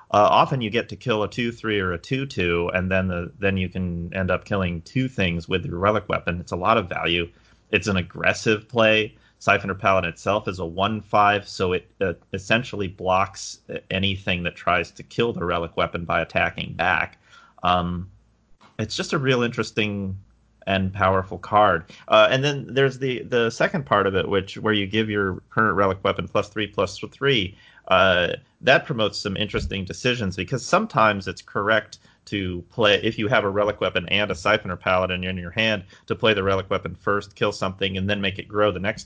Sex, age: male, 30-49